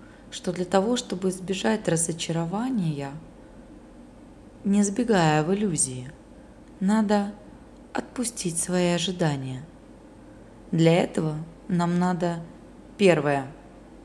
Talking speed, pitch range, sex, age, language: 80 wpm, 155-200 Hz, female, 20-39, Russian